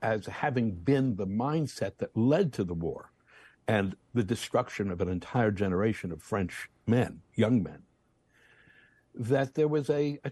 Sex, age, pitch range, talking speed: male, 60-79, 100-125 Hz, 155 wpm